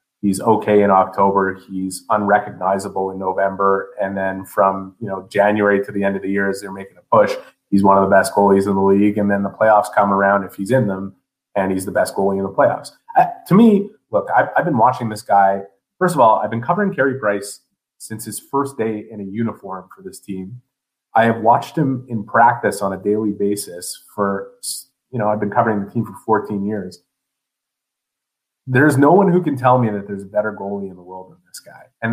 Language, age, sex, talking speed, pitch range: English, 30-49, male, 220 wpm, 100-125 Hz